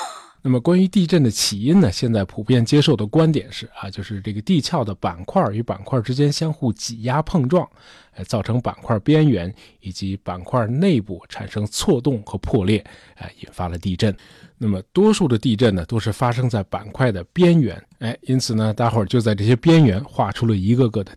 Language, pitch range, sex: Chinese, 100-135 Hz, male